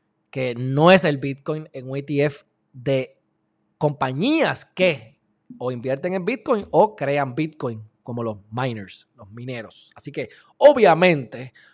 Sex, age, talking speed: male, 20-39, 135 wpm